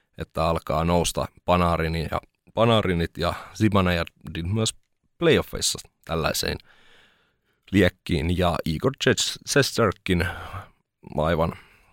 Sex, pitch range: male, 80-95 Hz